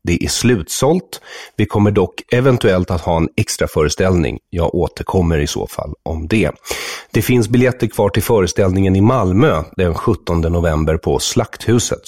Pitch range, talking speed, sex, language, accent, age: 80-115 Hz, 160 wpm, male, English, Swedish, 40-59